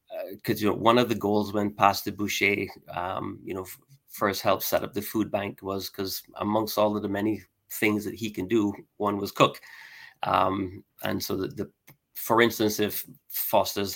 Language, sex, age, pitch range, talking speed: English, male, 30-49, 95-105 Hz, 195 wpm